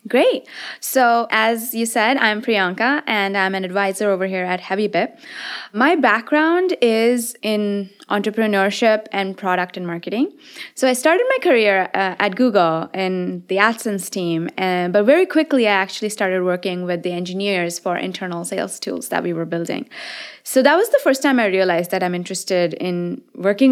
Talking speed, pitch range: 170 wpm, 180-235 Hz